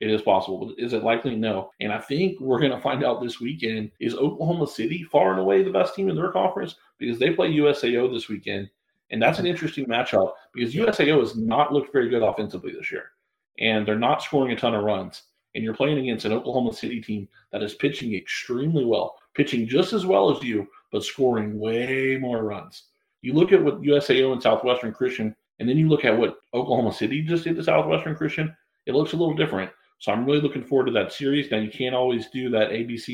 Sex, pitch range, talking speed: male, 110-145 Hz, 225 wpm